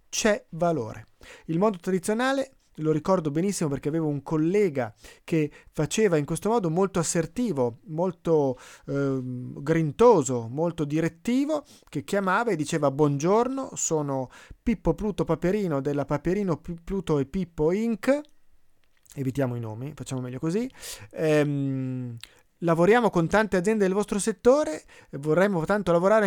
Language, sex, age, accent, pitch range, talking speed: Italian, male, 30-49, native, 140-195 Hz, 130 wpm